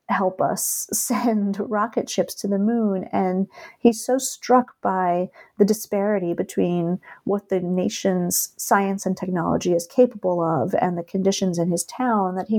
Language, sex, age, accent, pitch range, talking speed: English, female, 30-49, American, 175-210 Hz, 155 wpm